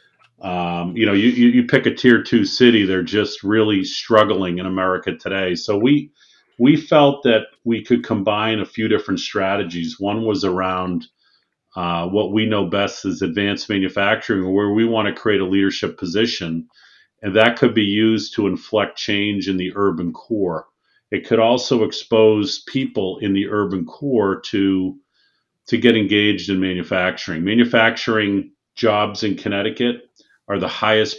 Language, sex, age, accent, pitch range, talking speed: English, male, 40-59, American, 95-115 Hz, 155 wpm